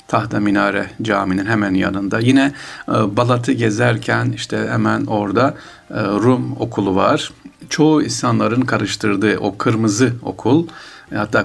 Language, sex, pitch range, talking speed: Turkish, male, 100-130 Hz, 110 wpm